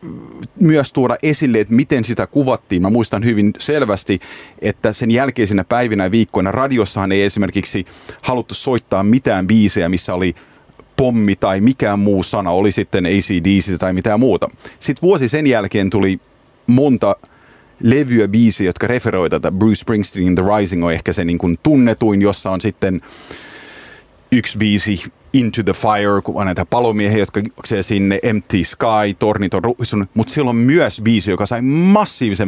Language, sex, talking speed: Finnish, male, 155 wpm